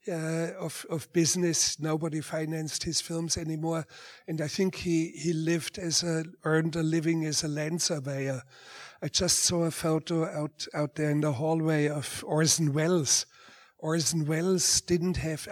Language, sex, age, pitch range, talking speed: English, male, 60-79, 155-170 Hz, 160 wpm